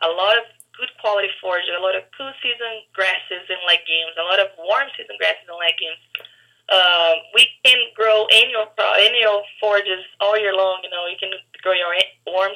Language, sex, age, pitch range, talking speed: English, female, 20-39, 185-235 Hz, 190 wpm